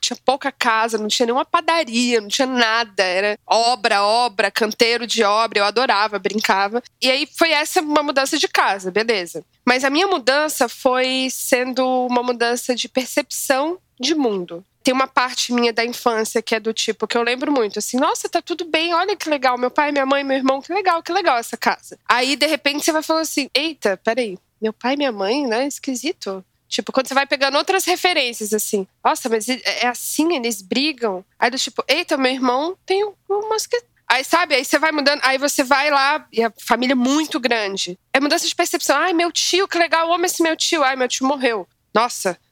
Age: 20-39